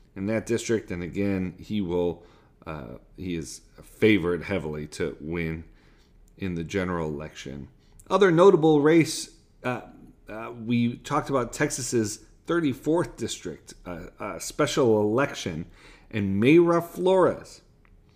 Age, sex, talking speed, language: 40-59, male, 120 wpm, English